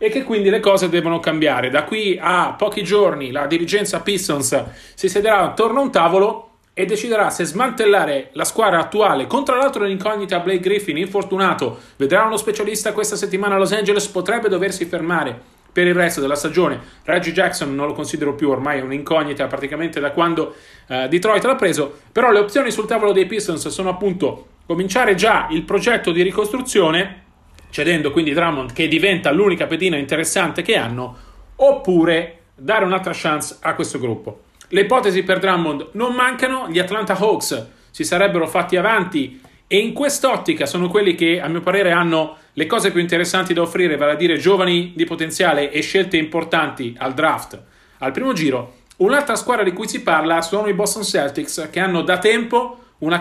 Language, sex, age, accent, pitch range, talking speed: Italian, male, 40-59, native, 160-210 Hz, 175 wpm